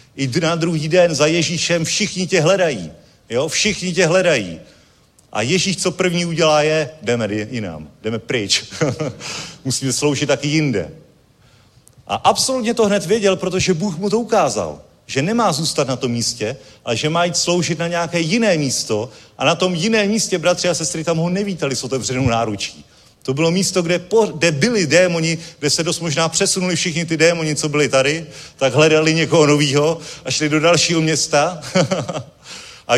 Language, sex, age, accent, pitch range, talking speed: Czech, male, 40-59, native, 145-185 Hz, 170 wpm